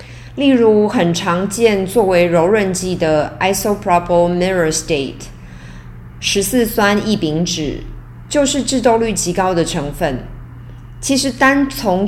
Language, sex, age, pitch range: Chinese, female, 30-49, 150-215 Hz